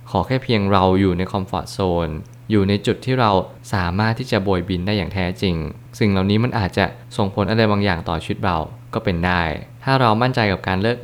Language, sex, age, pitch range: Thai, male, 20-39, 95-115 Hz